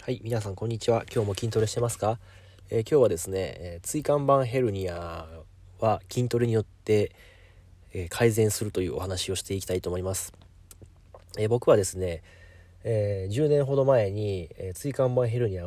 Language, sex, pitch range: Japanese, male, 95-125 Hz